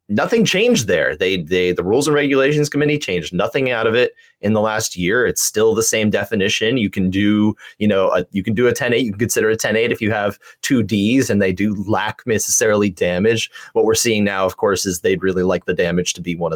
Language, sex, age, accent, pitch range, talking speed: English, male, 30-49, American, 95-130 Hz, 245 wpm